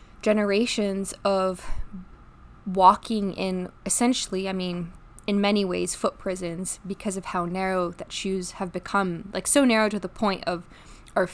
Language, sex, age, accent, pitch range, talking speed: English, female, 20-39, American, 185-215 Hz, 150 wpm